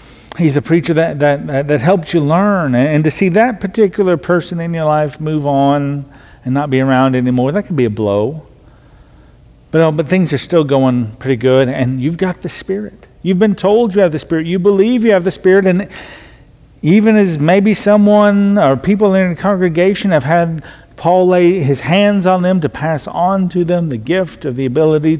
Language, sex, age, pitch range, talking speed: English, male, 50-69, 140-195 Hz, 205 wpm